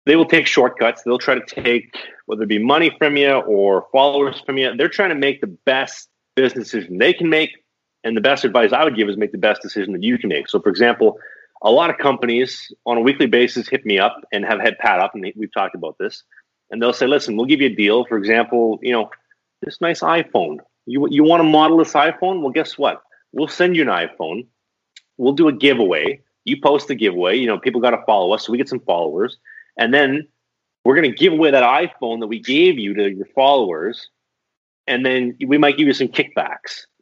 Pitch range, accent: 115-155 Hz, American